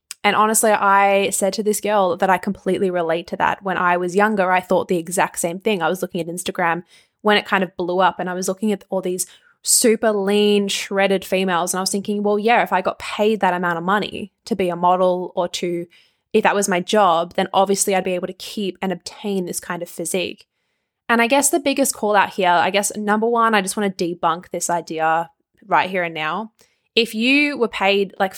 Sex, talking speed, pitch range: female, 235 wpm, 180-210 Hz